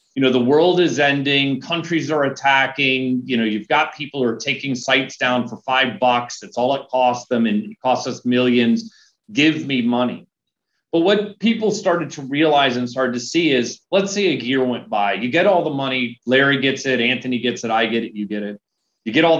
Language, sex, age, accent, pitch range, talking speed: English, male, 40-59, American, 125-170 Hz, 225 wpm